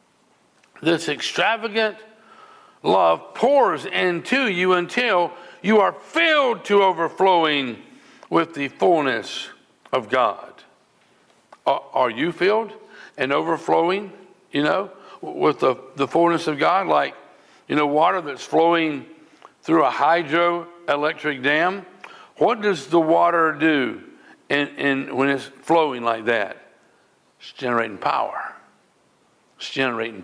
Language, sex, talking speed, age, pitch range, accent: English, male, 105 wpm, 60-79, 155-225 Hz, American